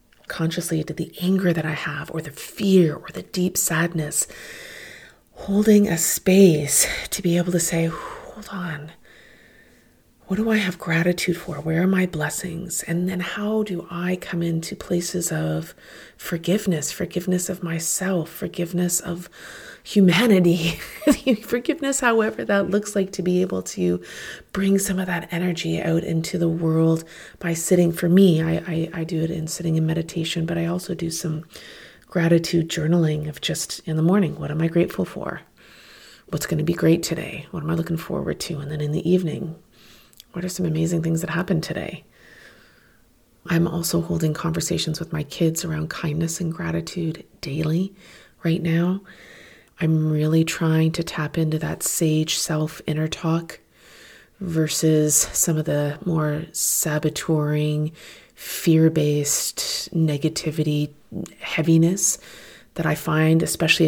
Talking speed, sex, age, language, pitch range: 150 wpm, female, 30-49, English, 160-180 Hz